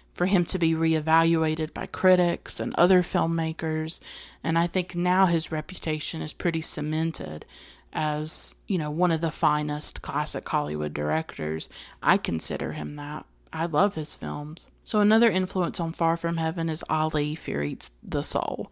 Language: English